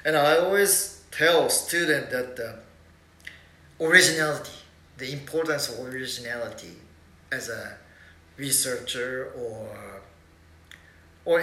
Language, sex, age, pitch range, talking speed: English, male, 40-59, 120-165 Hz, 90 wpm